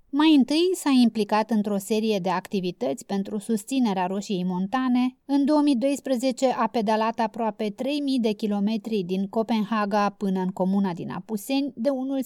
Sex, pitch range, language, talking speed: female, 205-265 Hz, Romanian, 140 wpm